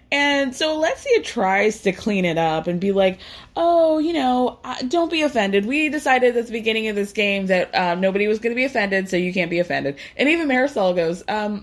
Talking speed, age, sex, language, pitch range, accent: 220 wpm, 20-39, female, English, 165-225 Hz, American